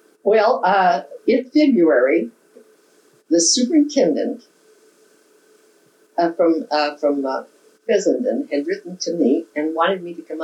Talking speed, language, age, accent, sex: 120 wpm, English, 60-79, American, female